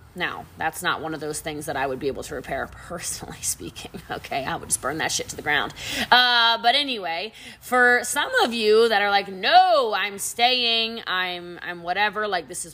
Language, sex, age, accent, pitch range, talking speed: English, female, 20-39, American, 145-210 Hz, 210 wpm